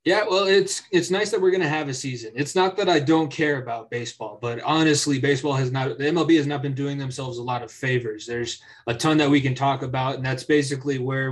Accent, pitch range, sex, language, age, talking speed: American, 125-150 Hz, male, English, 20-39, 260 wpm